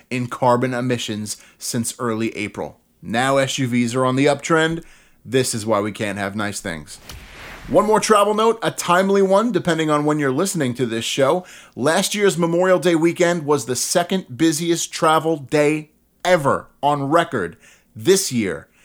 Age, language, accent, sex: 30-49, English, American, male